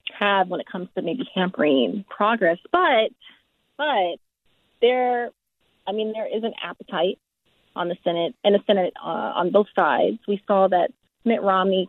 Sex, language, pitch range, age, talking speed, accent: female, English, 185-235 Hz, 30-49, 160 wpm, American